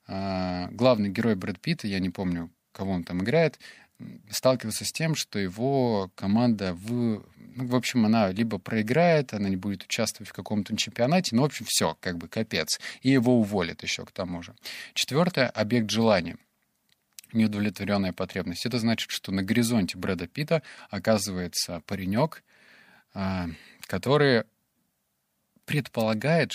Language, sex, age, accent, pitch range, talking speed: Russian, male, 20-39, native, 95-120 Hz, 140 wpm